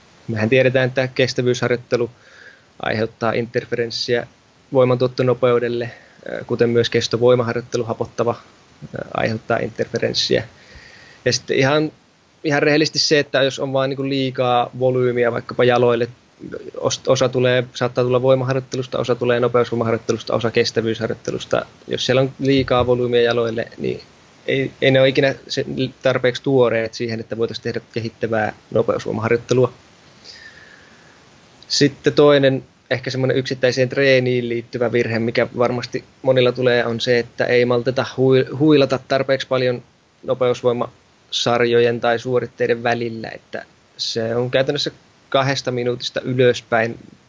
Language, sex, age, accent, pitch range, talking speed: Finnish, male, 20-39, native, 120-130 Hz, 115 wpm